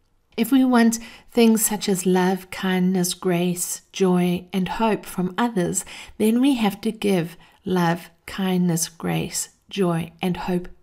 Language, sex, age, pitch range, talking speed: English, female, 50-69, 190-225 Hz, 140 wpm